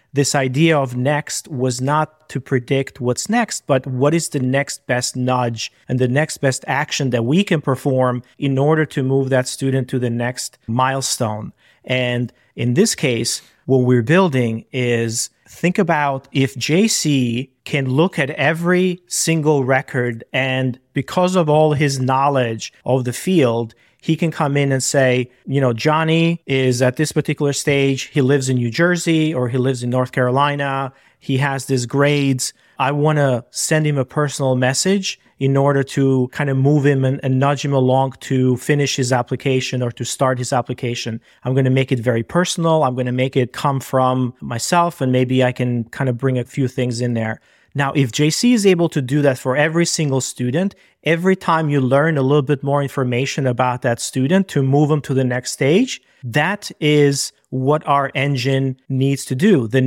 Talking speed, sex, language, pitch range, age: 190 wpm, male, English, 125-150 Hz, 40-59